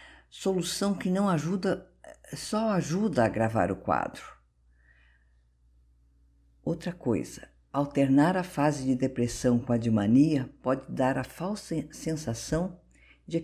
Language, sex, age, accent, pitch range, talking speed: Portuguese, female, 50-69, Brazilian, 100-160 Hz, 120 wpm